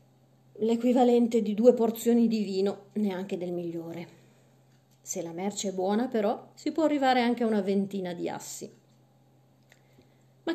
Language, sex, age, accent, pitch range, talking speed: Italian, female, 40-59, native, 175-230 Hz, 140 wpm